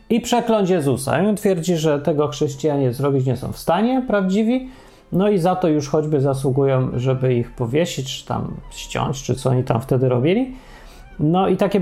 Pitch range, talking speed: 130-185 Hz, 185 wpm